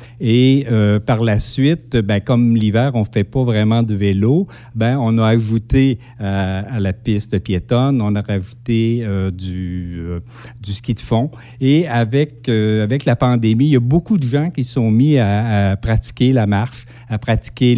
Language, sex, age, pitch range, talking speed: French, male, 50-69, 100-120 Hz, 190 wpm